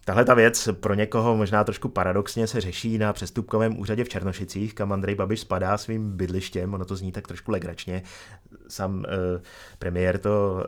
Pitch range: 95-105 Hz